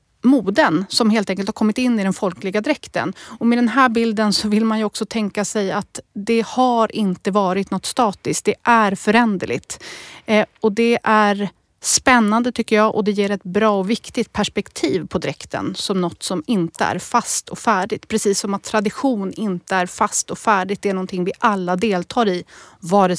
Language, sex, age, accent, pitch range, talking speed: Swedish, female, 30-49, native, 200-235 Hz, 190 wpm